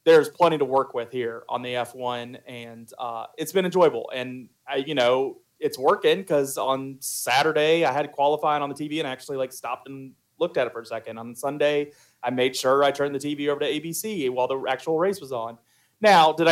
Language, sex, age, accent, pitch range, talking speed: English, male, 30-49, American, 130-160 Hz, 225 wpm